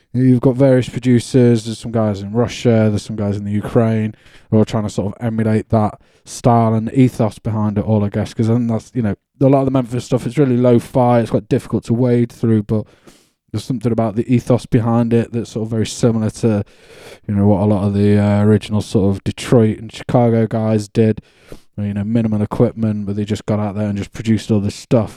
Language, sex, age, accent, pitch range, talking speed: English, male, 20-39, British, 105-120 Hz, 240 wpm